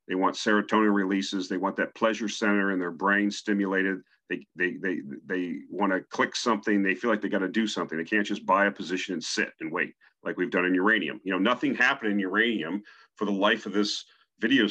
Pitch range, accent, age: 95-105 Hz, American, 40-59